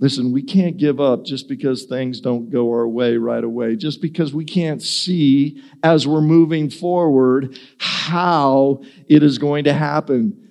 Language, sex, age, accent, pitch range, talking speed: English, male, 50-69, American, 125-170 Hz, 165 wpm